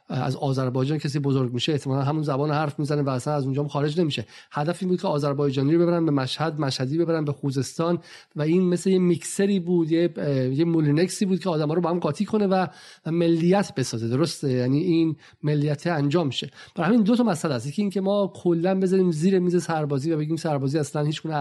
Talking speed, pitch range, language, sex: 205 wpm, 145-175 Hz, Persian, male